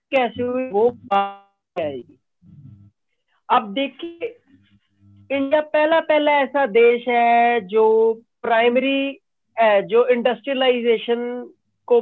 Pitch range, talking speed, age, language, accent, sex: 200-265 Hz, 85 wpm, 40-59, Hindi, native, female